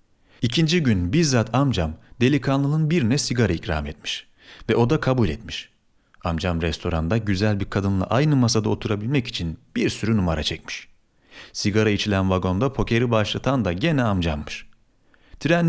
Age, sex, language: 40-59, male, Turkish